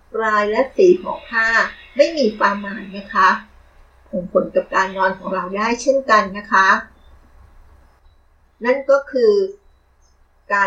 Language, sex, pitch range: Thai, female, 185-265 Hz